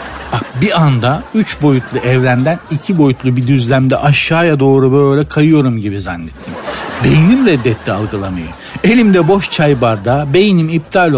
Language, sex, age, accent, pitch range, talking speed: Turkish, male, 60-79, native, 125-175 Hz, 135 wpm